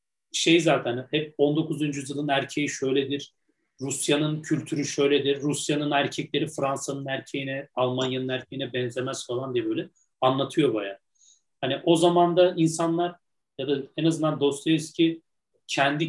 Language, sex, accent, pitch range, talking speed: Turkish, male, native, 140-170 Hz, 120 wpm